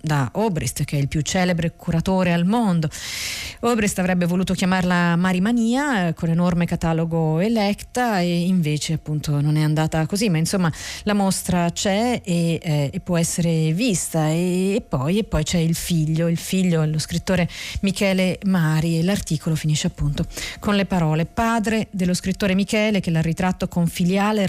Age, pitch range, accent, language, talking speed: 40-59, 160-195 Hz, native, Italian, 170 wpm